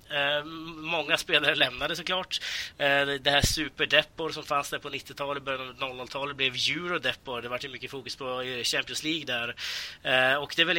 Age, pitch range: 20-39, 125-150 Hz